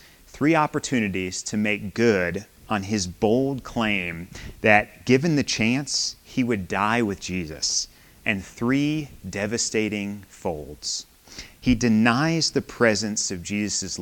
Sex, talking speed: male, 120 wpm